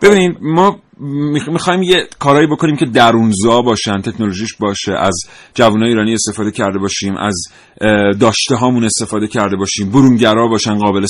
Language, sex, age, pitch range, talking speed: Persian, male, 30-49, 105-145 Hz, 140 wpm